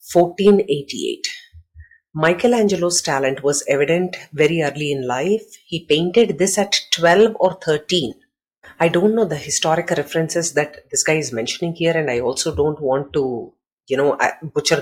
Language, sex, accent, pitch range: English, female, Indian, 145-185 Hz